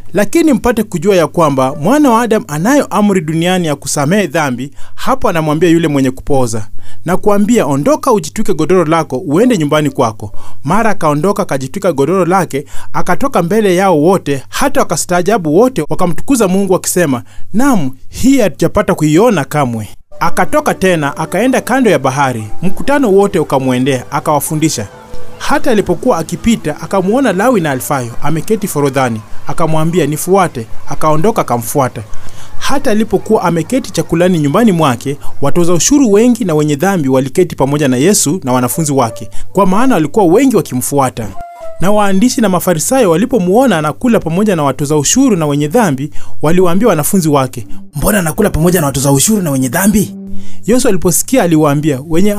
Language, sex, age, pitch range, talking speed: English, male, 30-49, 140-205 Hz, 150 wpm